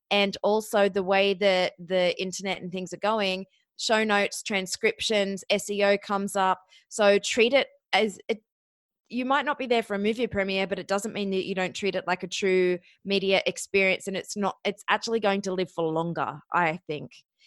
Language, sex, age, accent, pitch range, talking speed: English, female, 20-39, Australian, 175-205 Hz, 195 wpm